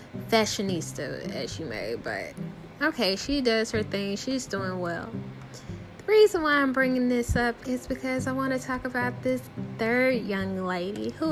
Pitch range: 185-275 Hz